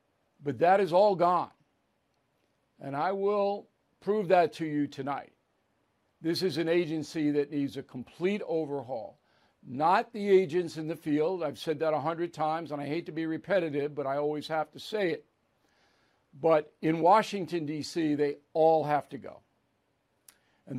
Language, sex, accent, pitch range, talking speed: English, male, American, 145-180 Hz, 160 wpm